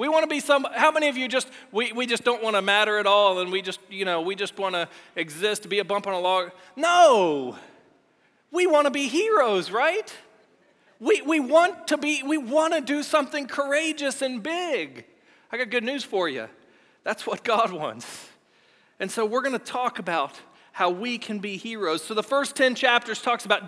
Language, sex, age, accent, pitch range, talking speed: English, male, 40-59, American, 205-270 Hz, 215 wpm